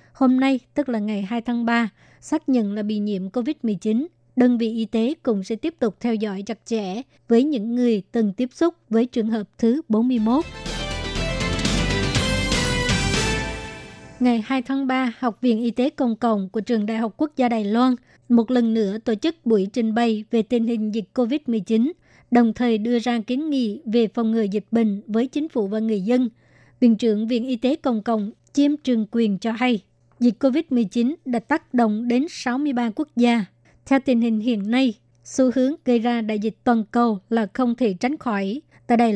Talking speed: 195 wpm